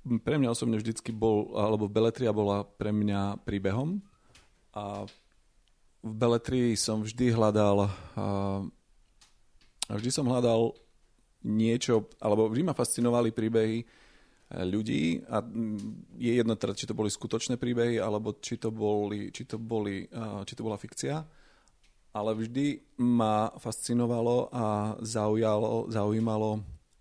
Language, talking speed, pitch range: Slovak, 120 wpm, 105-120 Hz